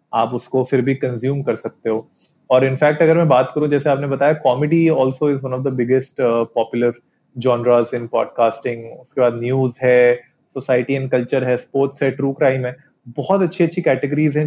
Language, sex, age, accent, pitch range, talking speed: Hindi, male, 30-49, native, 125-140 Hz, 85 wpm